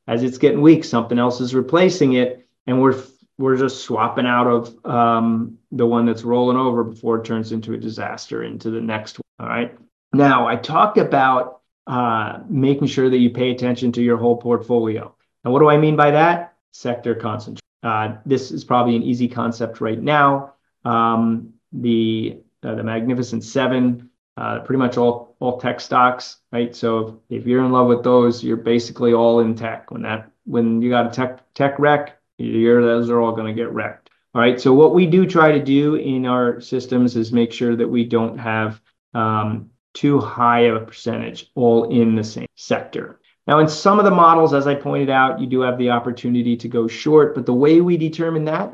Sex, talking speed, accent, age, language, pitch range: male, 200 wpm, American, 30-49, English, 115-135 Hz